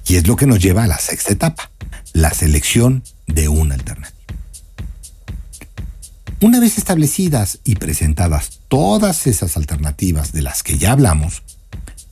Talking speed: 140 wpm